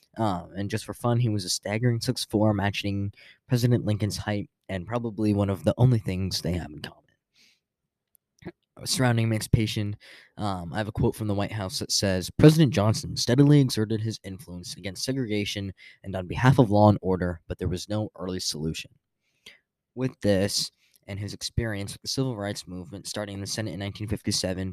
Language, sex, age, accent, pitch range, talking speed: English, male, 10-29, American, 95-115 Hz, 180 wpm